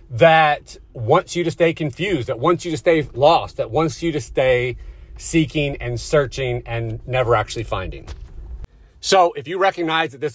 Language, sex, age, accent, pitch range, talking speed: English, male, 30-49, American, 125-165 Hz, 175 wpm